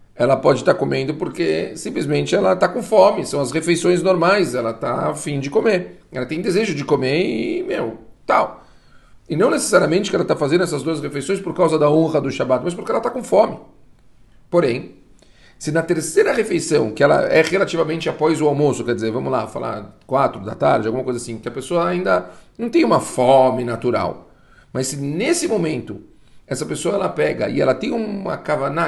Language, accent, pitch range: Portuguese, Brazilian, 140-195 Hz